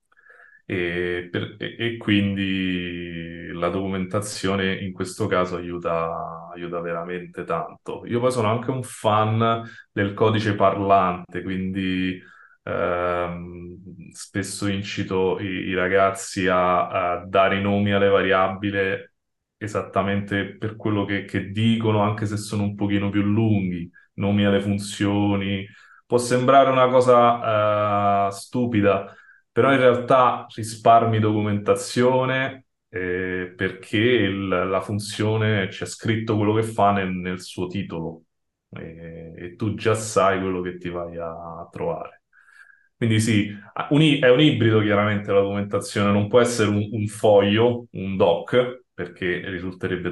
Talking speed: 125 wpm